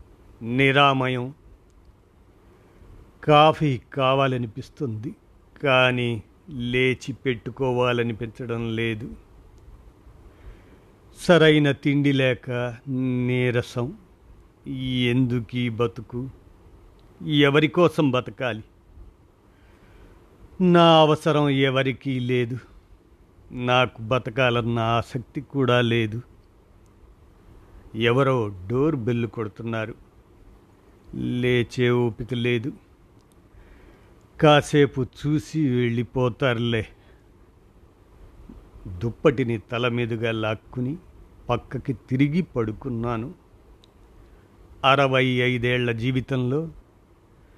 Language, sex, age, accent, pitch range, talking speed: Telugu, male, 50-69, native, 100-135 Hz, 55 wpm